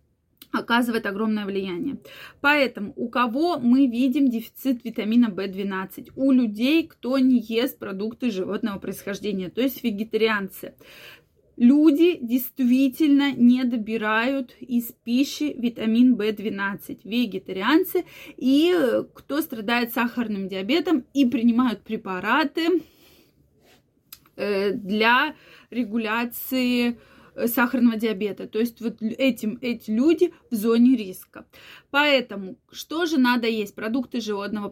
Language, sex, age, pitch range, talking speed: Russian, female, 20-39, 215-265 Hz, 100 wpm